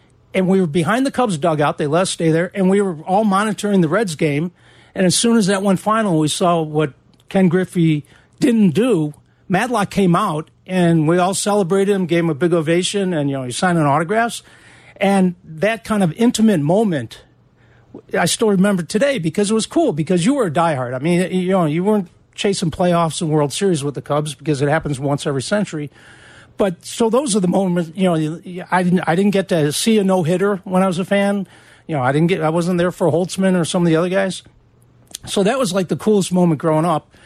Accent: American